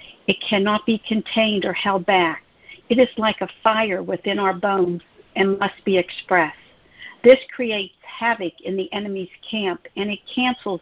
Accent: American